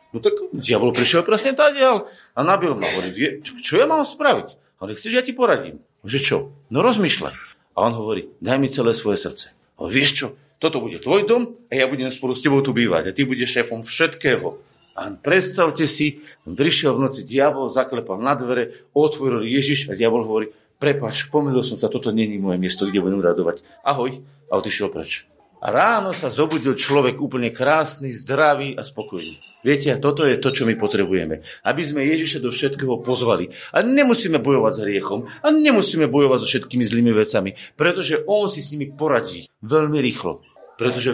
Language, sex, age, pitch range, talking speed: Slovak, male, 40-59, 125-210 Hz, 190 wpm